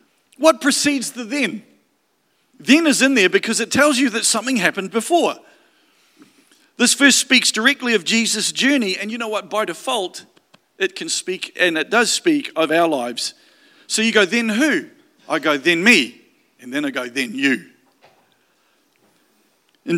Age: 50-69